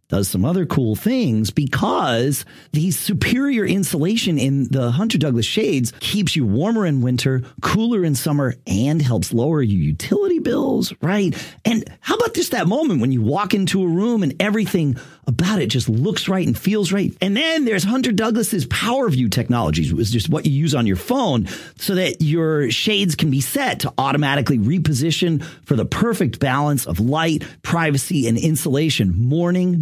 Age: 40-59